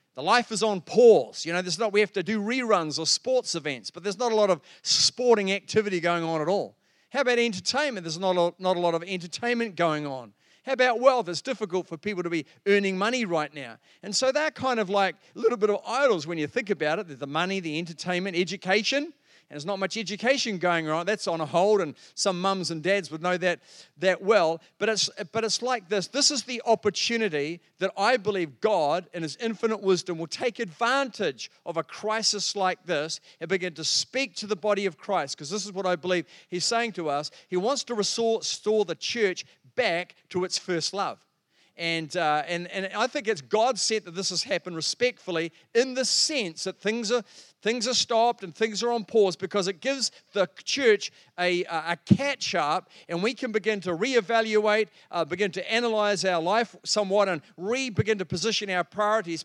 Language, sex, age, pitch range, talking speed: English, male, 40-59, 175-225 Hz, 210 wpm